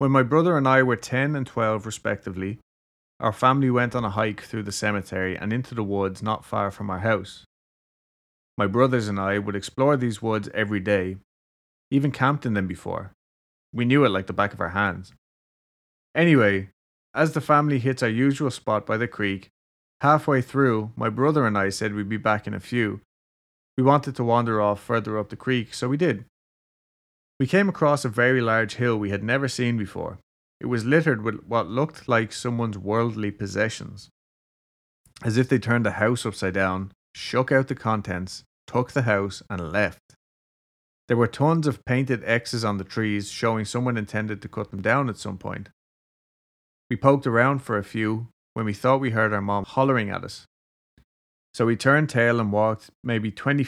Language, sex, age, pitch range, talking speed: English, male, 30-49, 100-125 Hz, 190 wpm